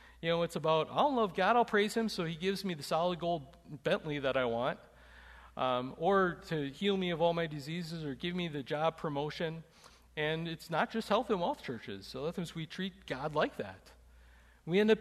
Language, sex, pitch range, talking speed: English, male, 145-195 Hz, 215 wpm